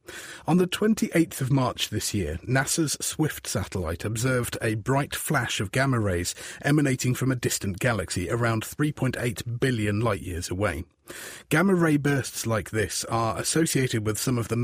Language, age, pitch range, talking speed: English, 30-49, 105-145 Hz, 150 wpm